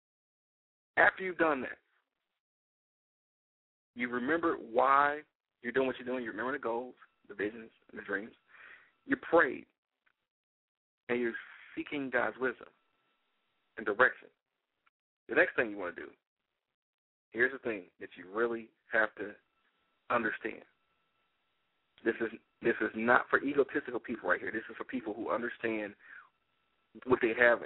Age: 40-59